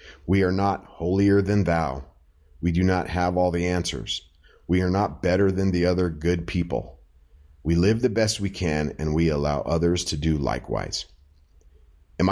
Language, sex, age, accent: English, male, 30-49, American